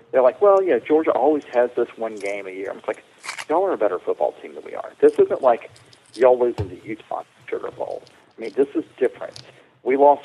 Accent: American